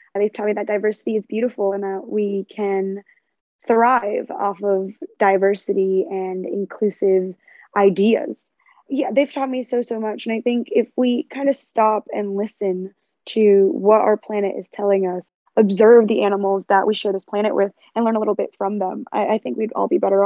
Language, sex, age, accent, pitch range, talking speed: English, female, 20-39, American, 195-235 Hz, 195 wpm